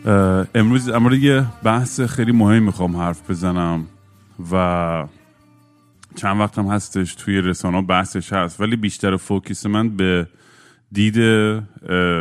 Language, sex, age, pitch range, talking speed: Persian, male, 30-49, 90-105 Hz, 120 wpm